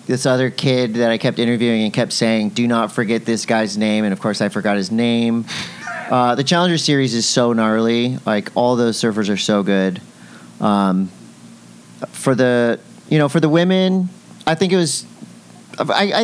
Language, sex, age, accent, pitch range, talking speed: English, male, 40-59, American, 115-150 Hz, 180 wpm